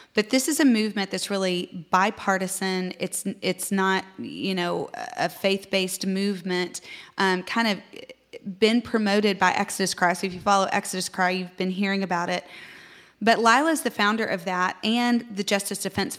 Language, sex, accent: English, female, American